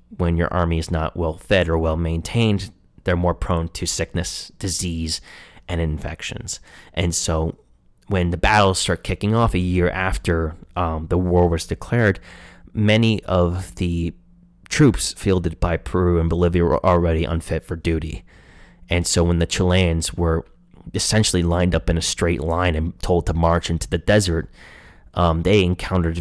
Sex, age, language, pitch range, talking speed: male, 30-49, English, 80-95 Hz, 160 wpm